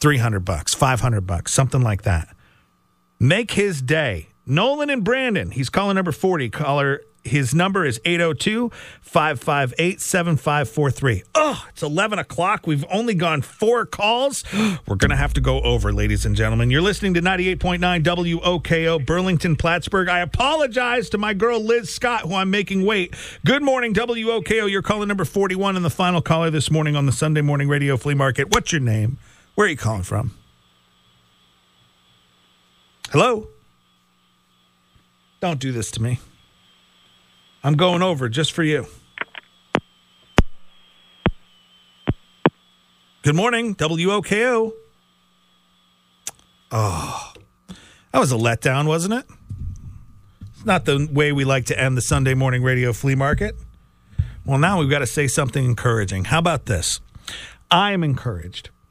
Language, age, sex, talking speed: English, 40-59, male, 140 wpm